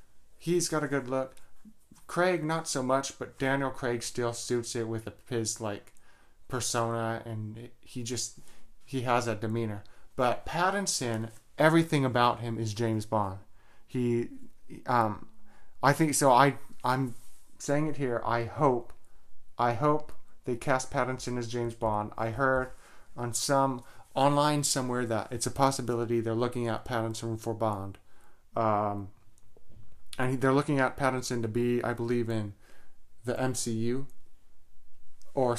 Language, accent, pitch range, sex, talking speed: English, American, 110-130 Hz, male, 145 wpm